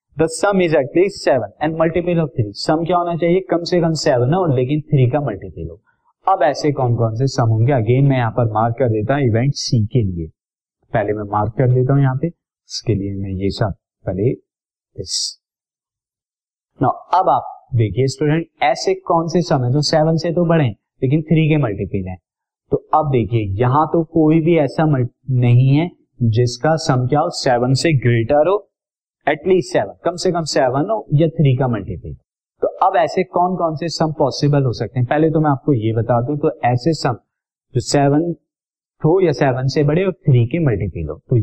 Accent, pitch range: native, 120-155 Hz